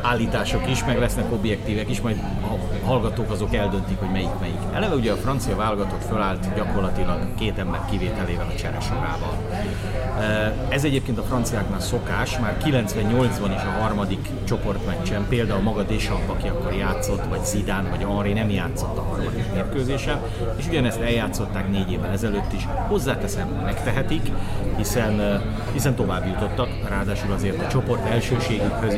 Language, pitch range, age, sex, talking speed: Hungarian, 100-115 Hz, 30-49, male, 145 wpm